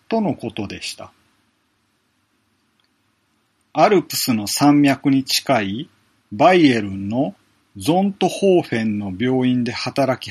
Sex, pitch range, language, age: male, 115-175 Hz, Japanese, 40-59